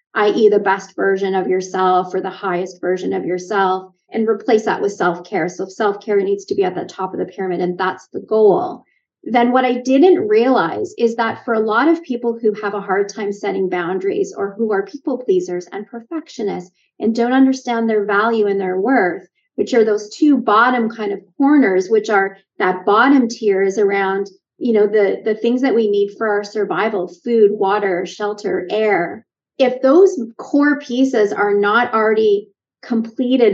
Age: 30-49